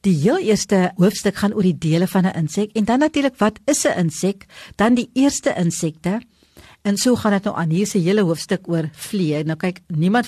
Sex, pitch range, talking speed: female, 170-220 Hz, 215 wpm